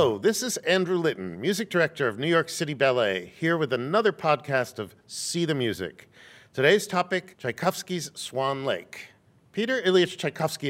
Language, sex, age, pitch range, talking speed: English, male, 50-69, 125-165 Hz, 155 wpm